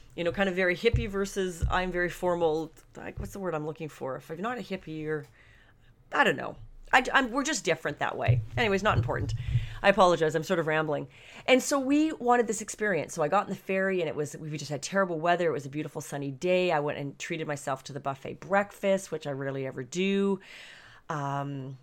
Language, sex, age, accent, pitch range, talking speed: English, female, 30-49, American, 145-195 Hz, 230 wpm